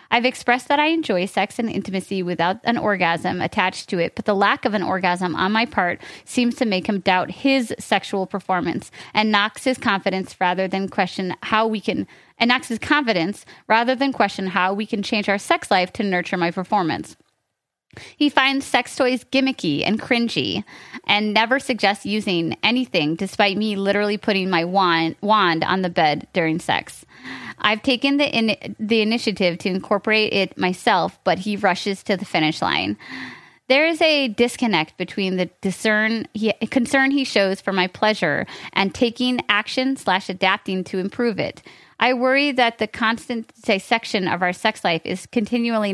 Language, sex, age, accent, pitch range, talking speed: English, female, 30-49, American, 190-240 Hz, 170 wpm